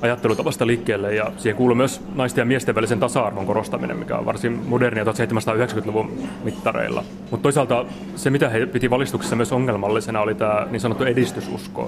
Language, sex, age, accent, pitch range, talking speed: Finnish, male, 30-49, native, 110-125 Hz, 160 wpm